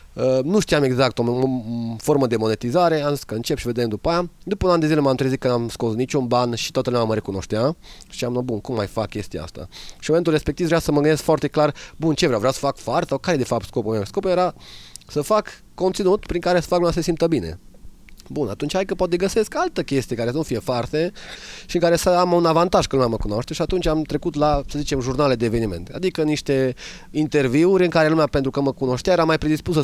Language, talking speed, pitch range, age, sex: Romanian, 255 wpm, 125-170 Hz, 20-39, male